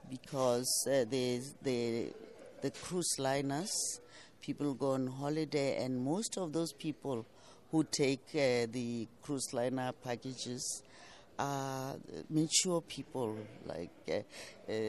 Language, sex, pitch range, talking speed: English, female, 125-150 Hz, 115 wpm